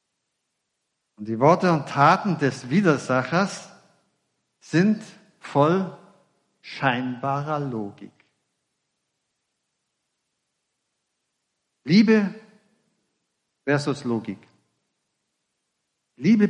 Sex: male